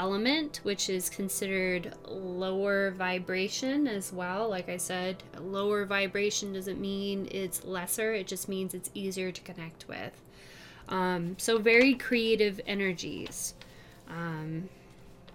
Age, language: 10-29, English